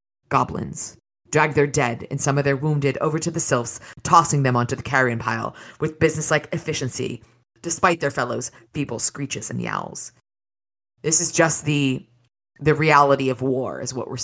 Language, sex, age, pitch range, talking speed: English, female, 30-49, 120-155 Hz, 170 wpm